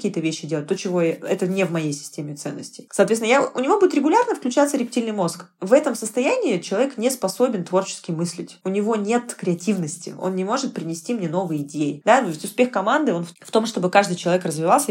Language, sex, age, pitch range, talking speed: Russian, female, 20-39, 165-230 Hz, 205 wpm